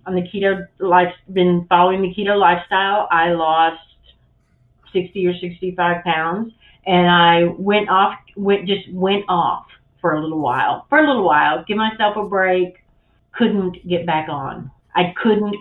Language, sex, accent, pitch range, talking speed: English, female, American, 170-200 Hz, 160 wpm